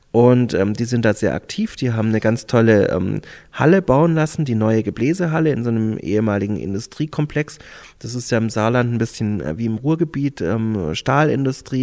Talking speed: 185 wpm